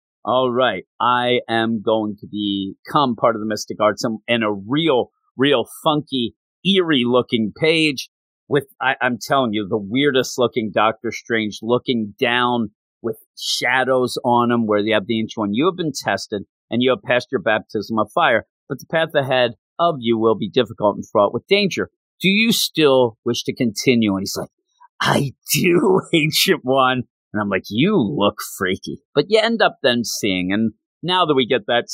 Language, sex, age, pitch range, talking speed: English, male, 40-59, 110-145 Hz, 180 wpm